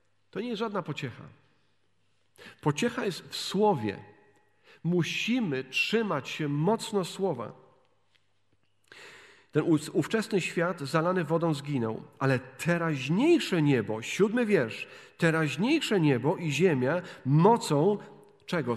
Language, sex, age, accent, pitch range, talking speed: Polish, male, 40-59, native, 140-200 Hz, 100 wpm